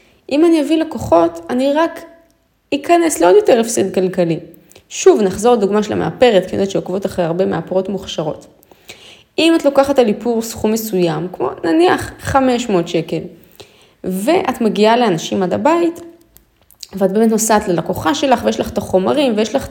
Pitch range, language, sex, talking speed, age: 185-260 Hz, Hebrew, female, 155 wpm, 20-39